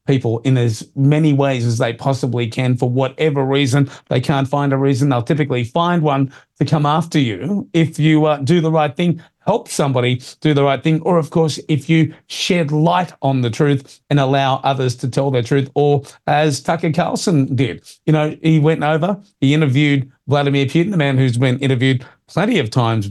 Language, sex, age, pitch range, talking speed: English, male, 40-59, 130-155 Hz, 200 wpm